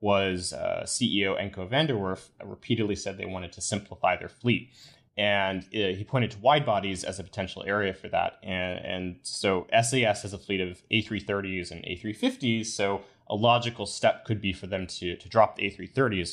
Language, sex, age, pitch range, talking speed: English, male, 20-39, 95-115 Hz, 185 wpm